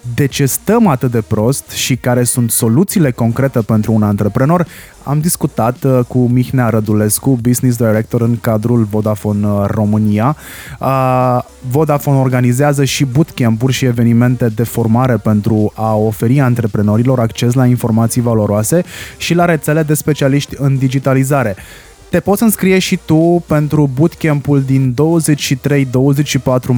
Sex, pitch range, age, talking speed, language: male, 115-145 Hz, 20-39, 130 wpm, Romanian